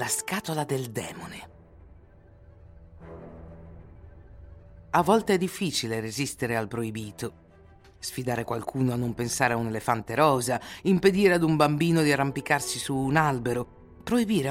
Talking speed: 125 wpm